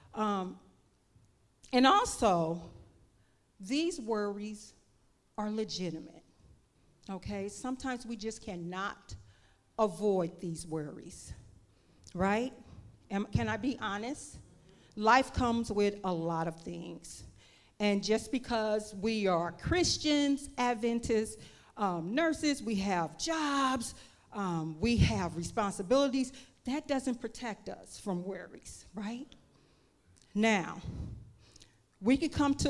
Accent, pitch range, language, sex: American, 175-240 Hz, English, female